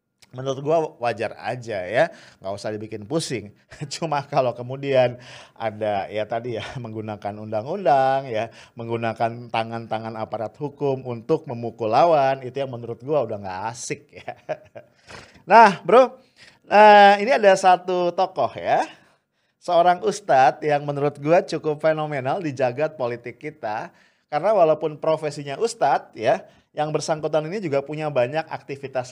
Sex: male